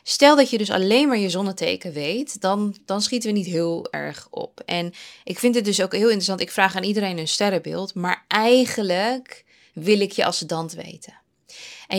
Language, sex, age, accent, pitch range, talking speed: Dutch, female, 20-39, Dutch, 175-220 Hz, 195 wpm